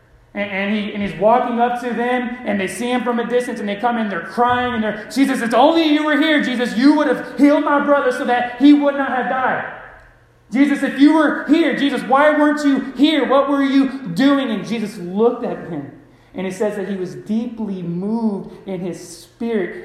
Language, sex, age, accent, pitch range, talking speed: English, male, 30-49, American, 170-235 Hz, 220 wpm